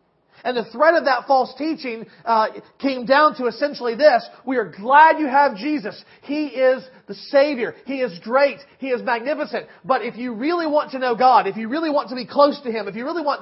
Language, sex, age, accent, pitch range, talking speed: English, male, 40-59, American, 195-280 Hz, 225 wpm